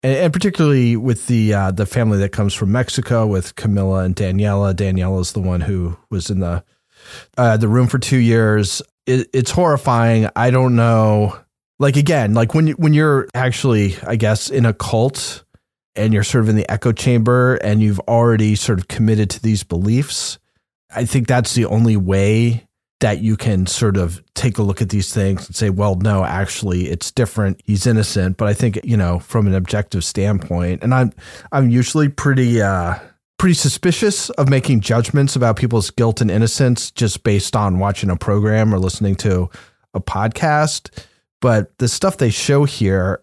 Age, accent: 30-49, American